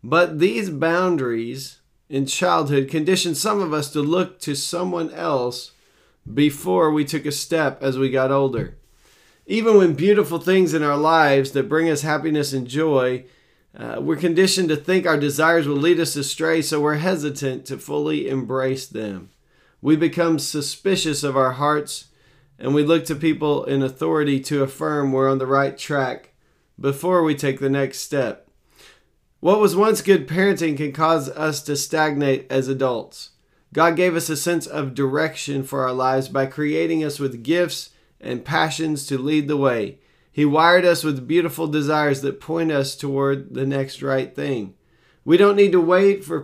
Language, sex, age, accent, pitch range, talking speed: English, male, 40-59, American, 135-165 Hz, 170 wpm